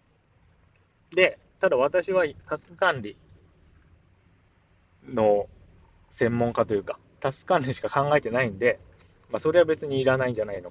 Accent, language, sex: native, Japanese, male